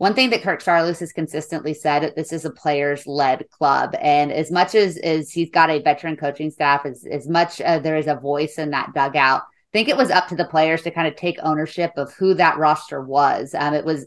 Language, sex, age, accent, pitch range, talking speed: English, female, 20-39, American, 155-185 Hz, 240 wpm